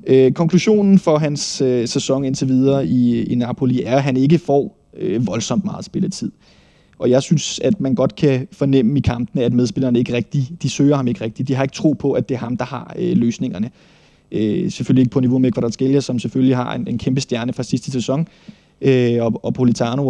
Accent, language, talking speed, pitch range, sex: native, Danish, 215 wpm, 125-145 Hz, male